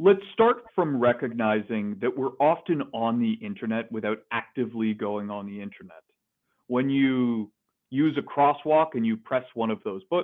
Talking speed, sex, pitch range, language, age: 160 wpm, male, 115-155 Hz, English, 40-59